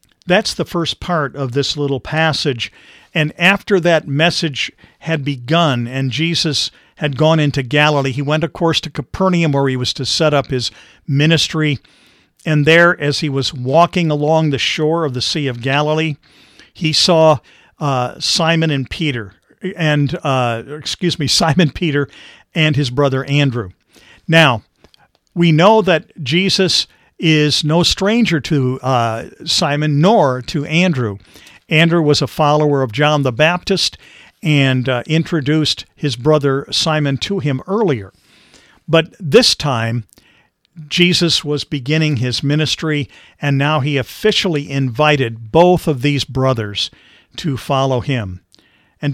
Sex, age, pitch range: male, 50-69, 135-165 Hz